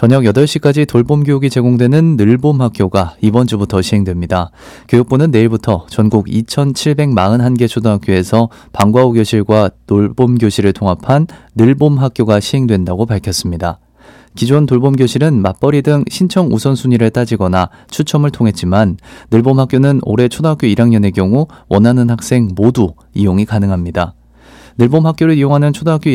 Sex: male